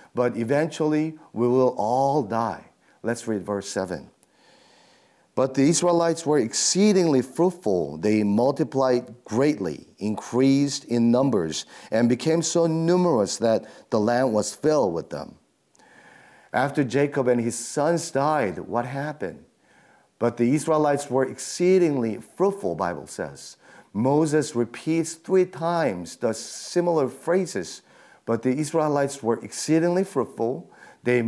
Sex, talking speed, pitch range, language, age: male, 120 wpm, 120-155 Hz, English, 40-59